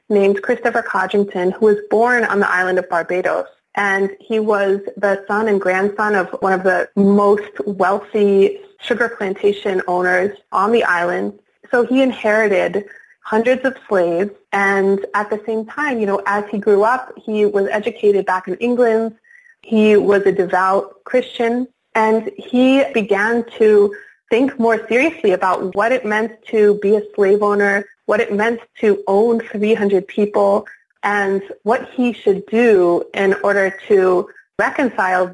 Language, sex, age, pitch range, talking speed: English, female, 30-49, 195-230 Hz, 155 wpm